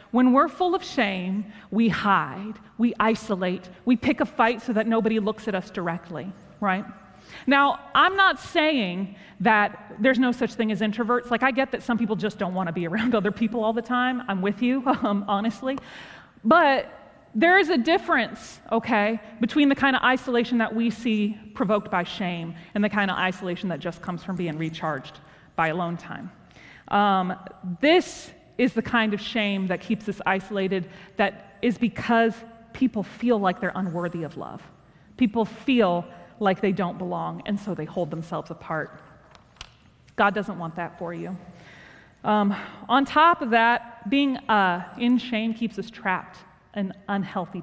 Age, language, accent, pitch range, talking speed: 30-49, English, American, 190-245 Hz, 175 wpm